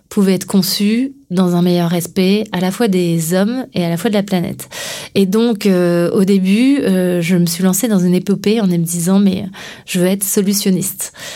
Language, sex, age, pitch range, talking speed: French, female, 30-49, 185-215 Hz, 215 wpm